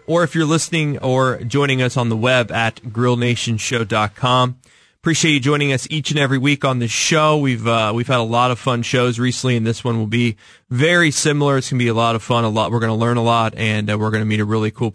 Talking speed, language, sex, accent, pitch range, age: 260 wpm, English, male, American, 110-140 Hz, 20-39